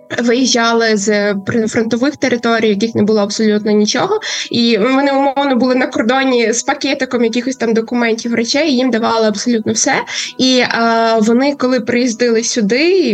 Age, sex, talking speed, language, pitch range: 20-39, female, 155 wpm, Ukrainian, 220-260 Hz